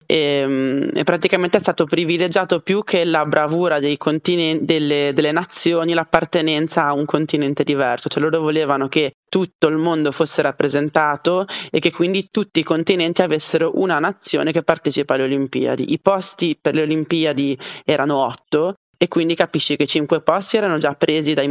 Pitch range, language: 145-175 Hz, Italian